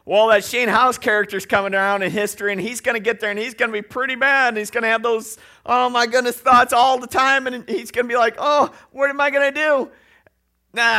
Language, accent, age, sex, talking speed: English, American, 50-69, male, 270 wpm